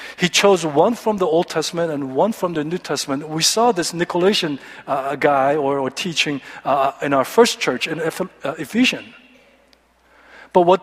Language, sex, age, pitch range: Korean, male, 50-69, 165-220 Hz